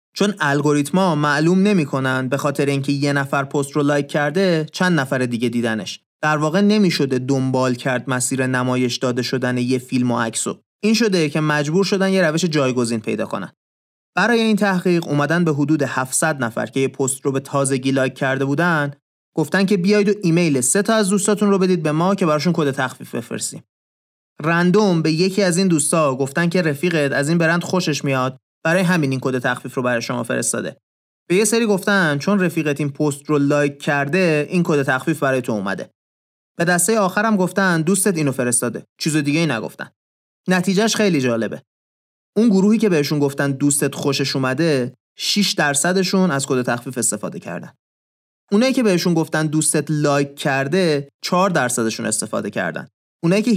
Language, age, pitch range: Persian, 30-49, 130-180 Hz